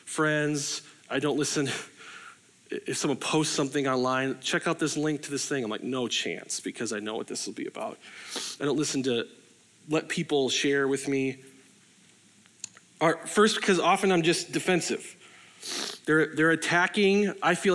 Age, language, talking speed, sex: 30-49, English, 160 wpm, male